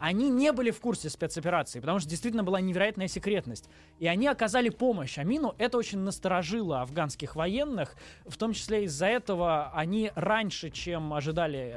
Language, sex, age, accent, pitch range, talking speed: Russian, male, 20-39, native, 140-190 Hz, 160 wpm